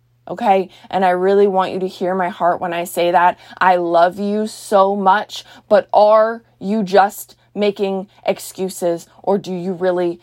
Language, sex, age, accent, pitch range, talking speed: English, female, 20-39, American, 175-230 Hz, 170 wpm